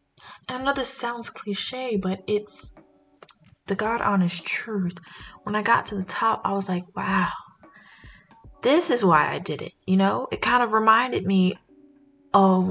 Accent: American